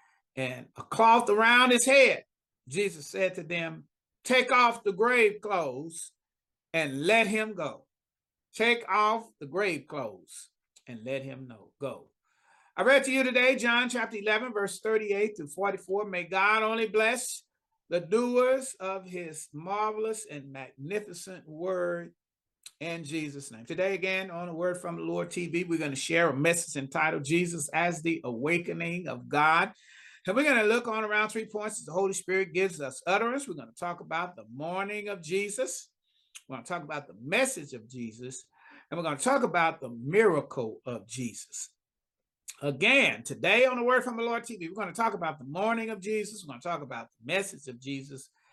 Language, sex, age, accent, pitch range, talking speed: English, male, 40-59, American, 145-215 Hz, 185 wpm